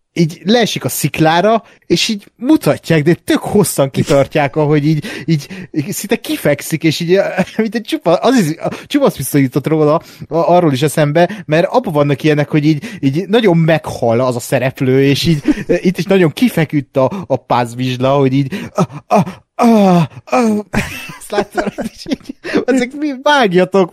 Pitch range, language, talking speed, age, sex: 140-195 Hz, Hungarian, 140 wpm, 30-49, male